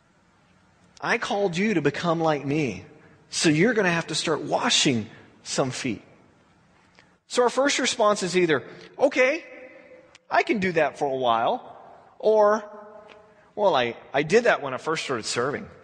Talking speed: 160 wpm